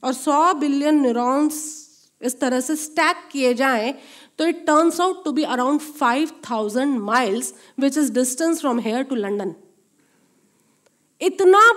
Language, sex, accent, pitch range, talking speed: Hindi, female, native, 255-335 Hz, 140 wpm